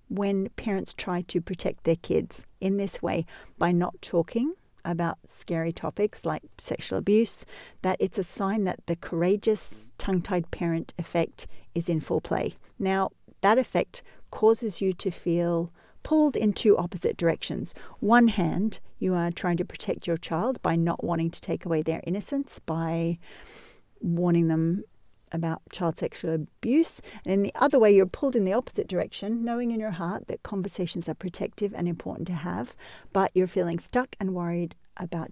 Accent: Australian